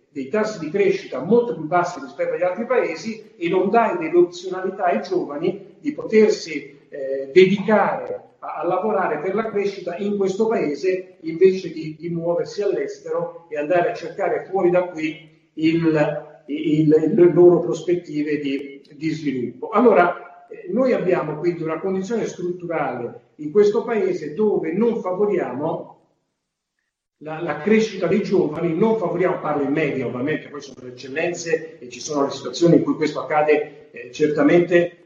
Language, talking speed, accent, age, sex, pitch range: Italian, 155 wpm, native, 50-69, male, 155-215 Hz